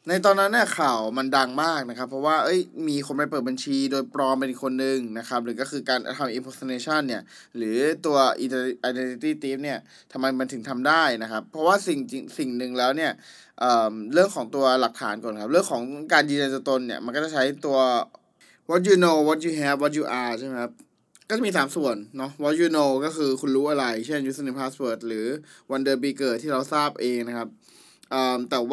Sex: male